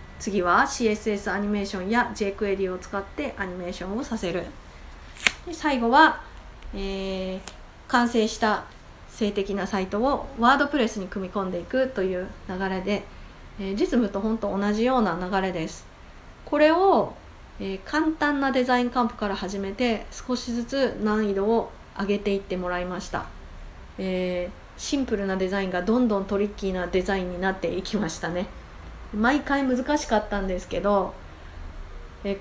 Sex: female